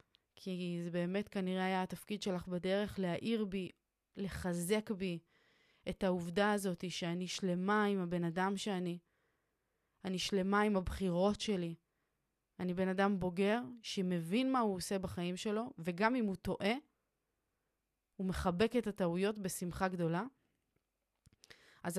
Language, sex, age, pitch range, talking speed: Hebrew, female, 20-39, 180-210 Hz, 130 wpm